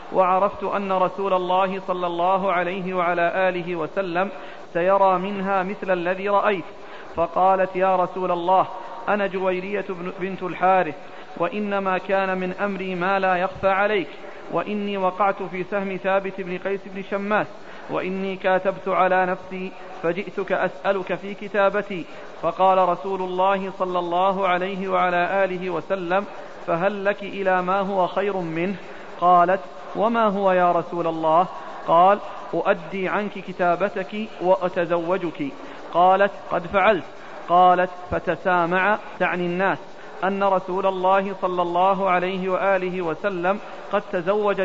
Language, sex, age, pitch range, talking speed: Arabic, male, 40-59, 180-195 Hz, 125 wpm